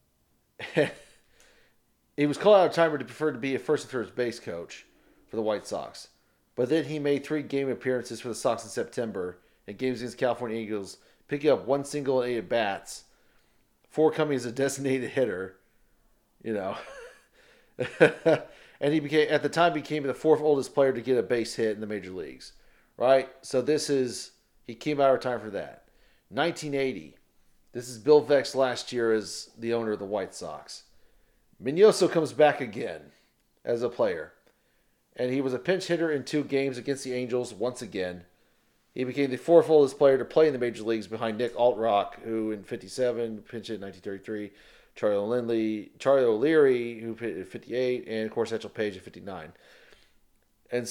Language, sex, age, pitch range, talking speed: English, male, 40-59, 115-145 Hz, 185 wpm